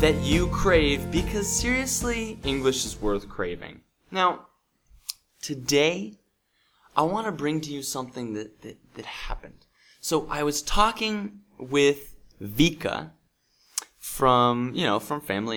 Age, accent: 20-39, American